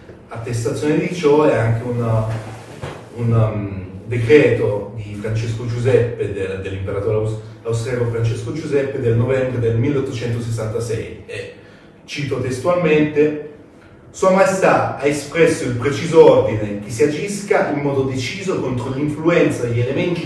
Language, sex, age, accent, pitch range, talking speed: Italian, male, 40-59, native, 115-150 Hz, 120 wpm